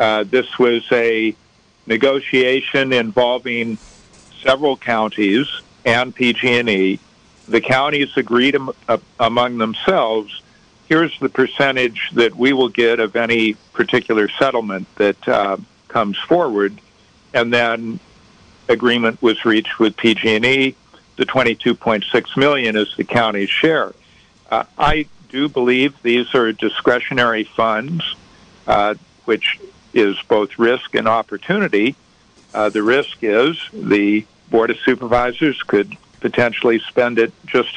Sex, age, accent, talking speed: male, 50-69, American, 120 wpm